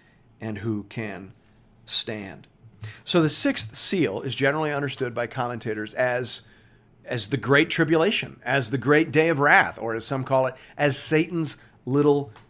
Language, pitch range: English, 115-150 Hz